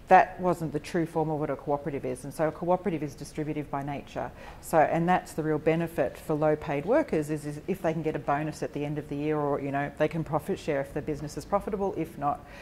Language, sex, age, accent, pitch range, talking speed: English, female, 40-59, Australian, 150-175 Hz, 260 wpm